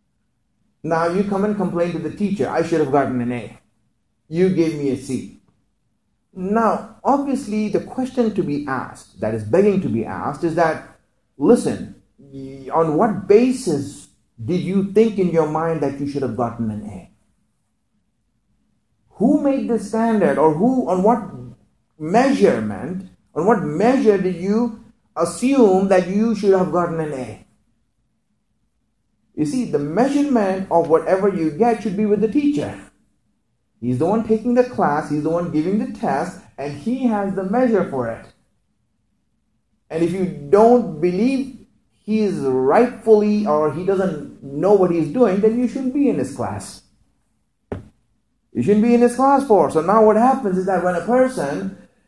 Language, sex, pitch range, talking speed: English, male, 145-225 Hz, 165 wpm